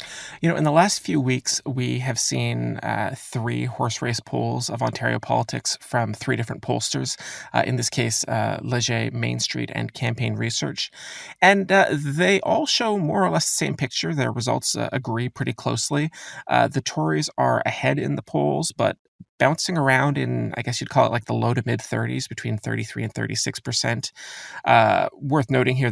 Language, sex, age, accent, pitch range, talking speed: English, male, 30-49, American, 110-145 Hz, 185 wpm